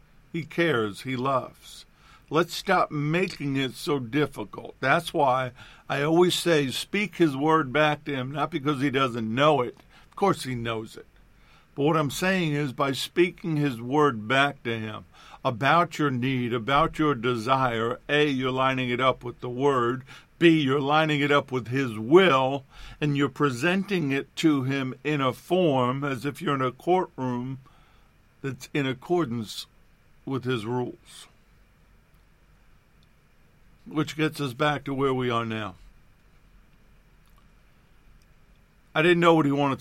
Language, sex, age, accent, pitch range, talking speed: English, male, 50-69, American, 130-155 Hz, 155 wpm